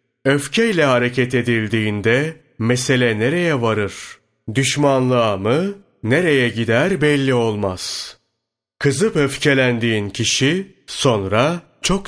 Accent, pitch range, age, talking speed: native, 115-145 Hz, 30-49, 85 wpm